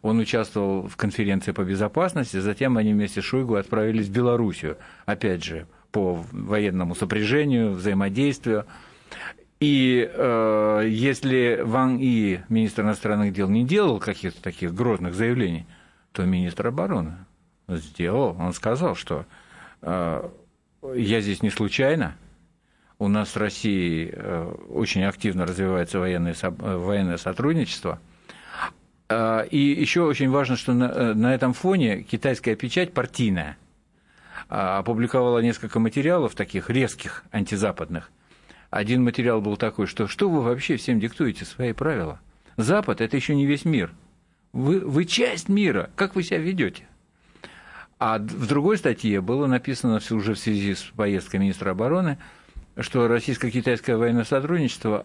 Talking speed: 130 wpm